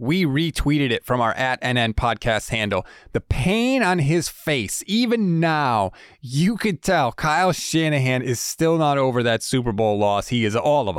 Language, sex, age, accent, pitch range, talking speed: English, male, 30-49, American, 115-160 Hz, 180 wpm